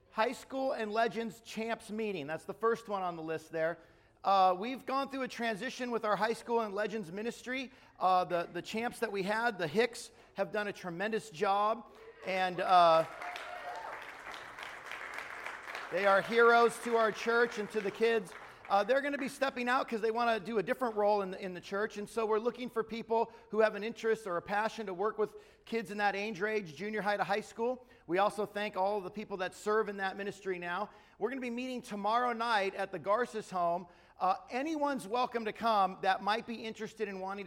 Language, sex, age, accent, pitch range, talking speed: English, male, 40-59, American, 175-230 Hz, 215 wpm